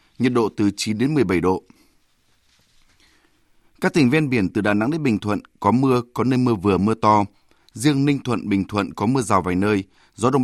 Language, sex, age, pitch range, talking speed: Vietnamese, male, 20-39, 100-125 Hz, 215 wpm